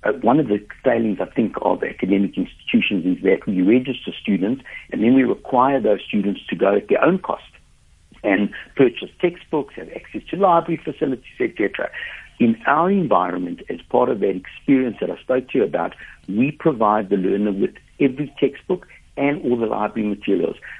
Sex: male